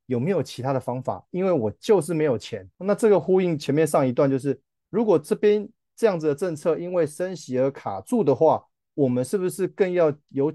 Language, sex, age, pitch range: Chinese, male, 30-49, 120-150 Hz